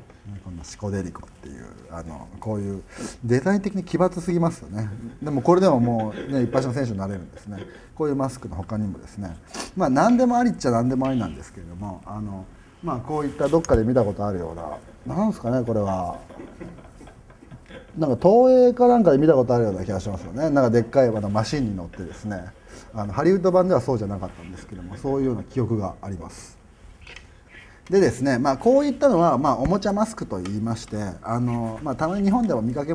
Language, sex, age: Japanese, male, 30-49